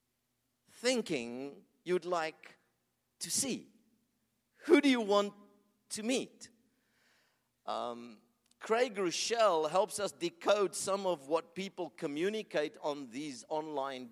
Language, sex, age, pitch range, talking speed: English, male, 50-69, 160-235 Hz, 105 wpm